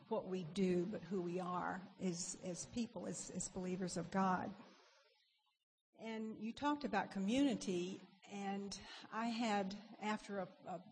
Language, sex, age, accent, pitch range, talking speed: English, female, 60-79, American, 185-210 Hz, 145 wpm